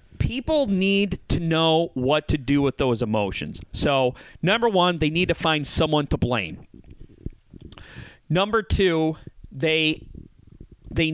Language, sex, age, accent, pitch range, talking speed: English, male, 30-49, American, 120-165 Hz, 130 wpm